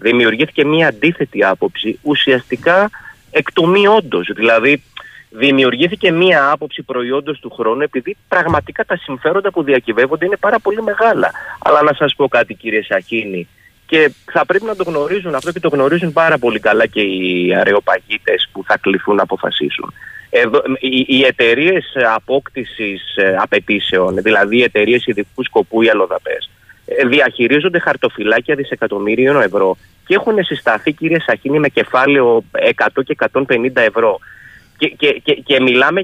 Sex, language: male, Greek